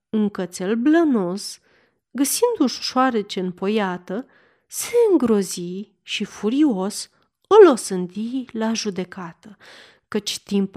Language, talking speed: Romanian, 90 wpm